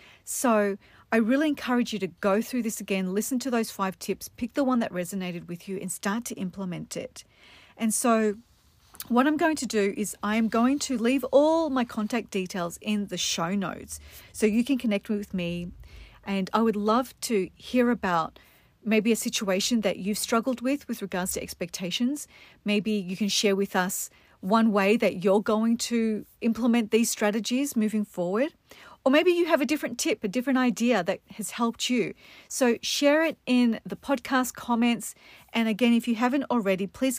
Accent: Australian